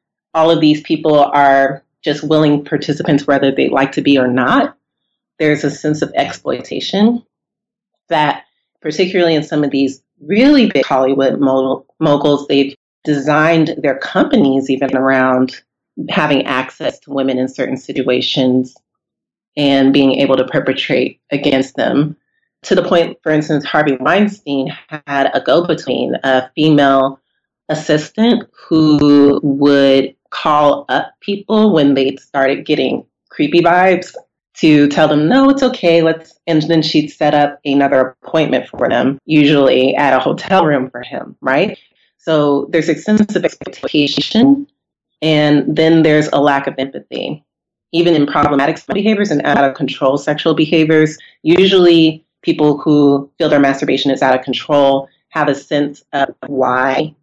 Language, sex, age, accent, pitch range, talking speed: English, female, 30-49, American, 135-160 Hz, 145 wpm